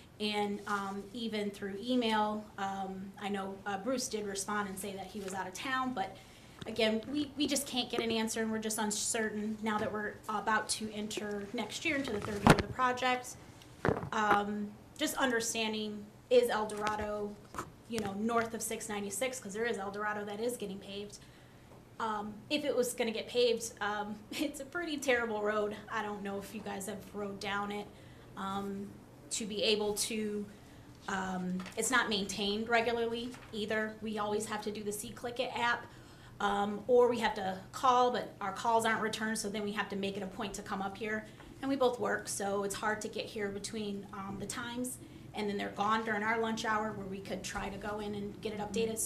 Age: 20-39